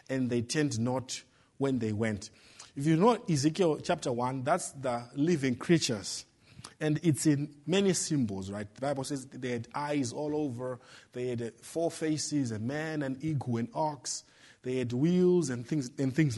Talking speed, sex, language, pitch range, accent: 170 wpm, male, English, 135-185 Hz, Nigerian